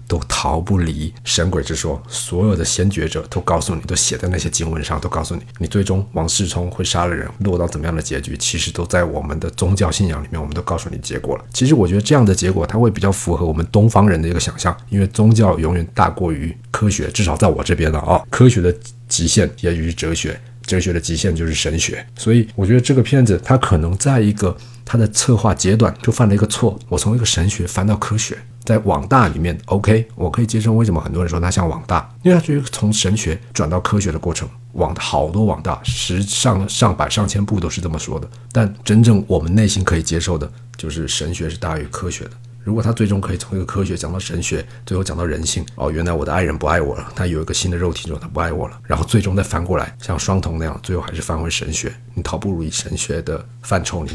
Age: 50-69